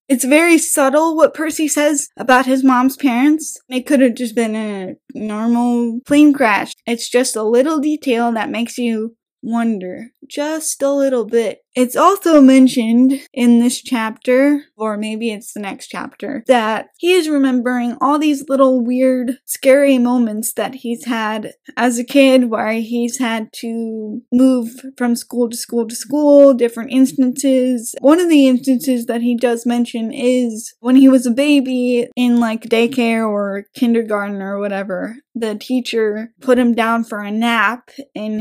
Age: 10-29